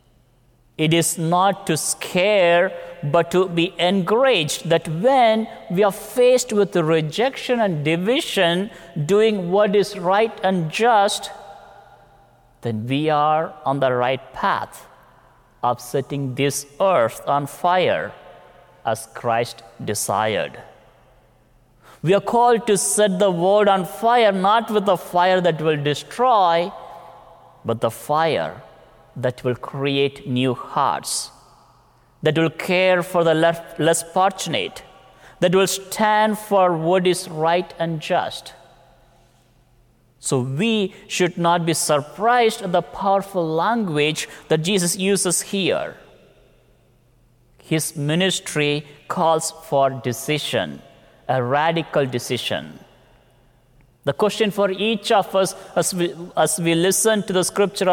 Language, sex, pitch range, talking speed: English, male, 140-195 Hz, 120 wpm